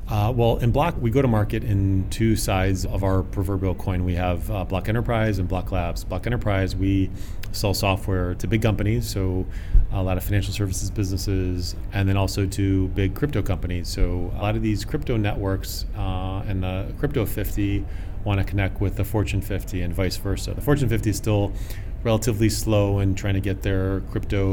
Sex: male